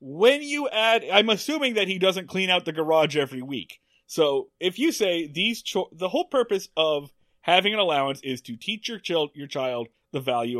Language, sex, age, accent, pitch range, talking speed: English, male, 30-49, American, 145-210 Hz, 205 wpm